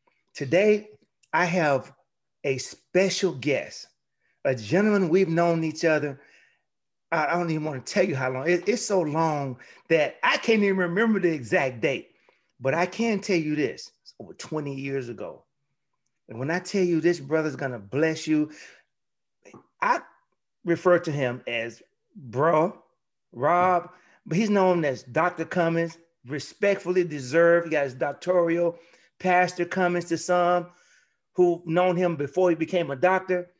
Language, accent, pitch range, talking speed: English, American, 150-185 Hz, 150 wpm